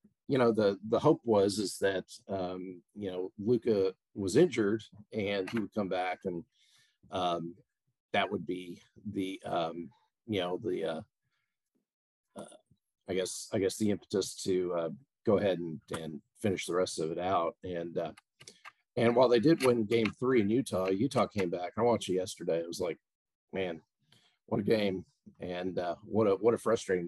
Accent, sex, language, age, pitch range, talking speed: American, male, English, 40-59, 90-120 Hz, 180 wpm